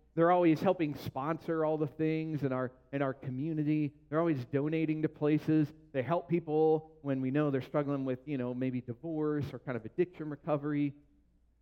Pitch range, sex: 130-155 Hz, male